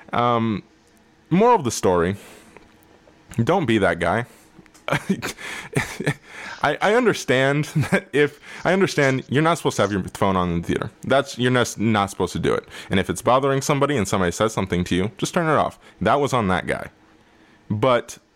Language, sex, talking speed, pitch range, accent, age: English, male, 180 wpm, 95-135 Hz, American, 20-39